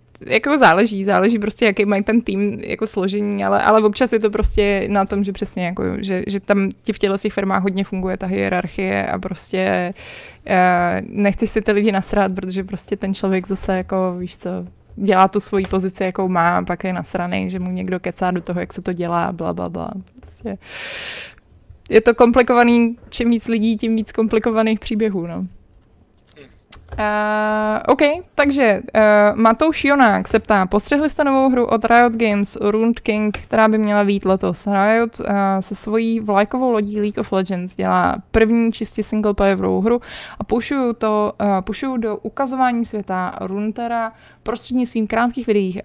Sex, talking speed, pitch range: female, 170 wpm, 190-225 Hz